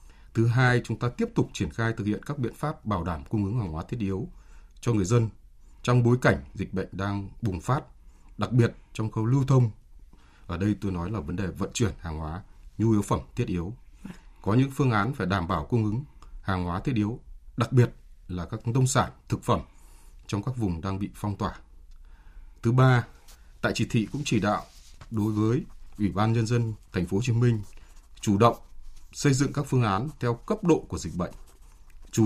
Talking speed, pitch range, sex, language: 215 wpm, 85-120 Hz, male, Vietnamese